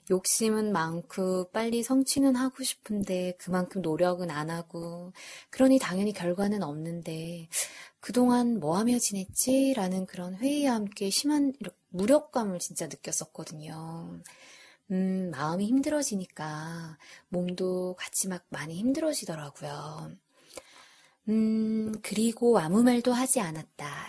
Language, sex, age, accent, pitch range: Korean, female, 20-39, native, 175-235 Hz